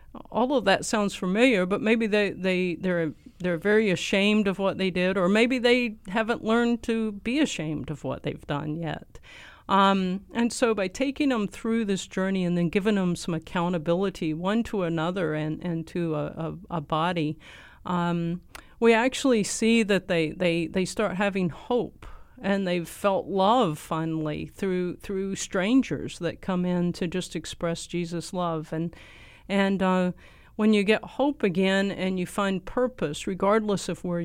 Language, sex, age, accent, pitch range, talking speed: English, female, 50-69, American, 170-205 Hz, 170 wpm